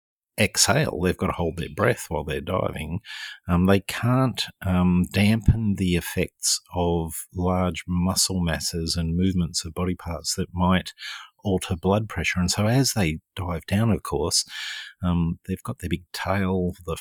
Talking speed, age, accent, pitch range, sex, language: 160 wpm, 50-69, Australian, 80-95 Hz, male, English